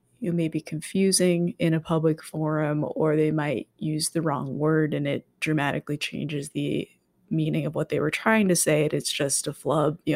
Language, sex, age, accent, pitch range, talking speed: English, female, 20-39, American, 155-175 Hz, 200 wpm